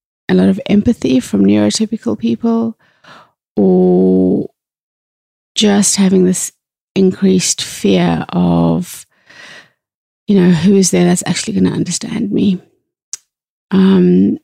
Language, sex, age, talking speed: English, female, 30-49, 110 wpm